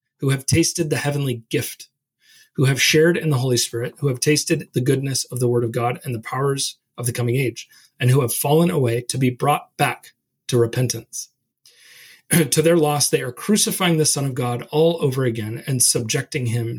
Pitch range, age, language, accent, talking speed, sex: 125-155 Hz, 30-49, English, American, 205 wpm, male